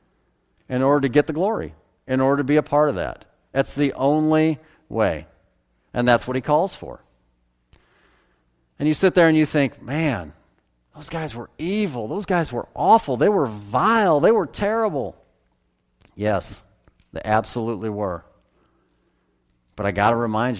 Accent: American